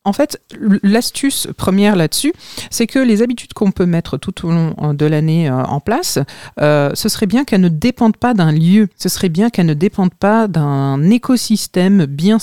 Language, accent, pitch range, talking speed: French, French, 165-220 Hz, 190 wpm